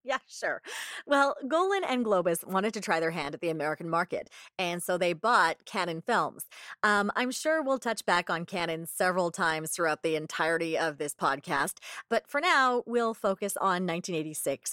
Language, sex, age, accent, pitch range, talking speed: English, female, 30-49, American, 170-225 Hz, 180 wpm